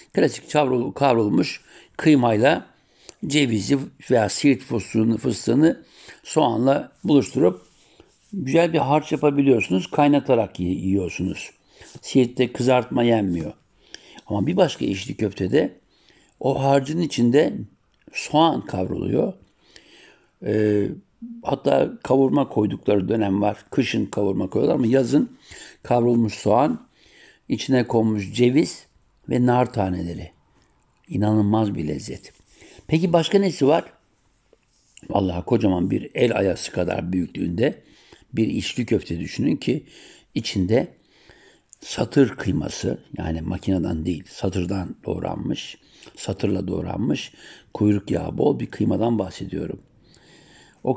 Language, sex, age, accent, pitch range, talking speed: German, male, 60-79, Turkish, 95-135 Hz, 100 wpm